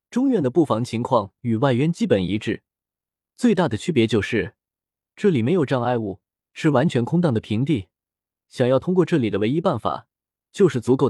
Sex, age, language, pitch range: male, 20-39, Chinese, 110-160 Hz